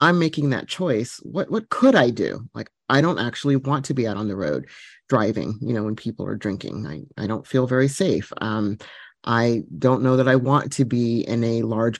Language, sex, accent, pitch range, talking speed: English, male, American, 115-145 Hz, 225 wpm